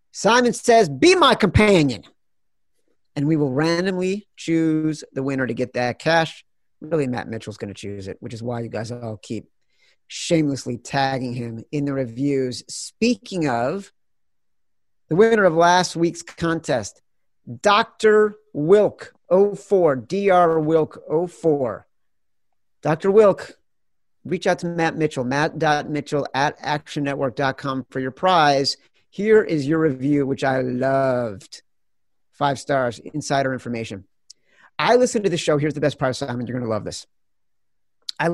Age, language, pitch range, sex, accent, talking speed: 50-69, English, 135-185 Hz, male, American, 140 wpm